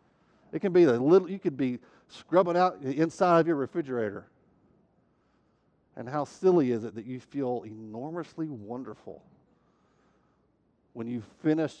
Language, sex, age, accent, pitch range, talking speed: English, male, 50-69, American, 120-185 Hz, 140 wpm